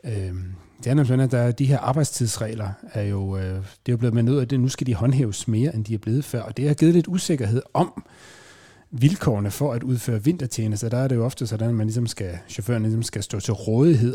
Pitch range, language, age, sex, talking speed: 105-130 Hz, Danish, 30-49, male, 235 wpm